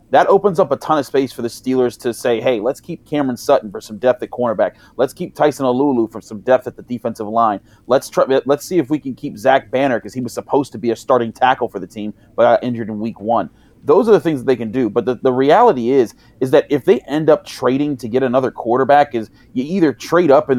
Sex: male